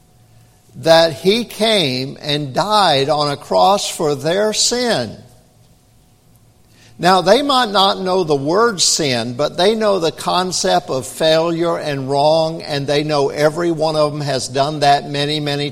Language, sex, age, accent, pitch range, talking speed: English, male, 60-79, American, 120-180 Hz, 155 wpm